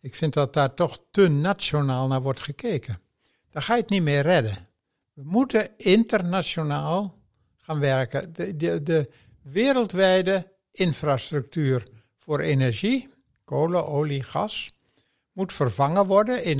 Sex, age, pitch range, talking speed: male, 60-79, 135-185 Hz, 125 wpm